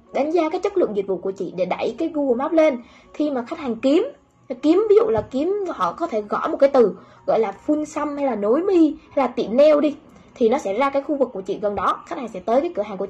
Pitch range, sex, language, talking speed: 215-300 Hz, female, Vietnamese, 295 wpm